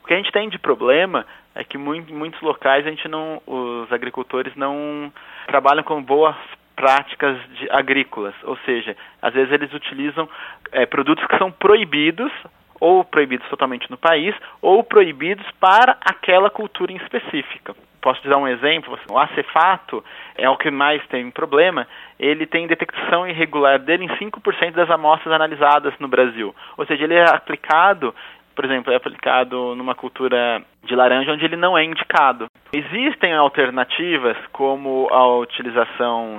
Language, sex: Portuguese, male